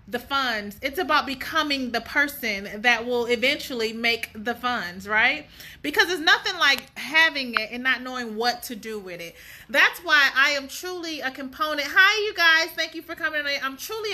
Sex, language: female, English